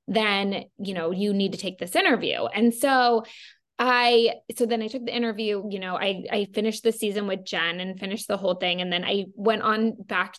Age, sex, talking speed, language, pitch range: 20-39, female, 220 wpm, English, 190-230 Hz